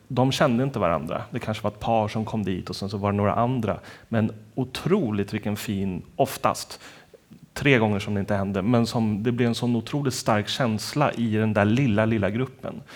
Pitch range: 105-130 Hz